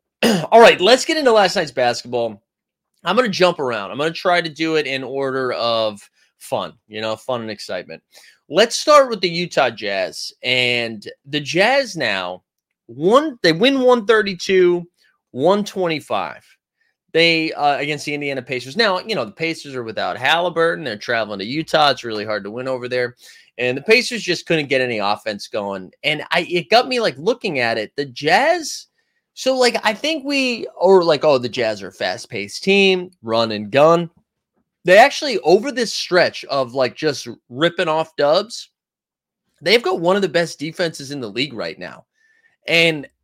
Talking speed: 180 wpm